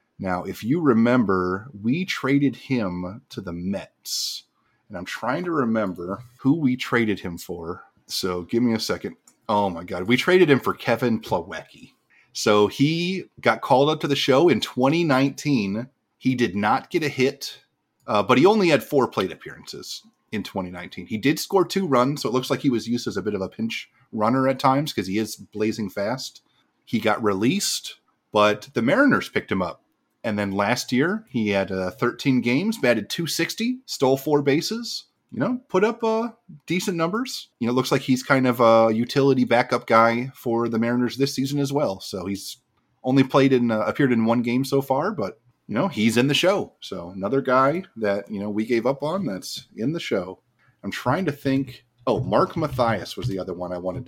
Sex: male